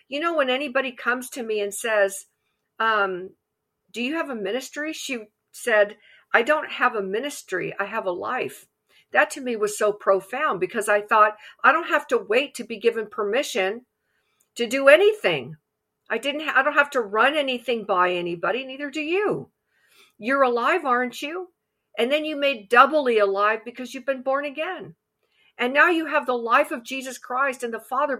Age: 50-69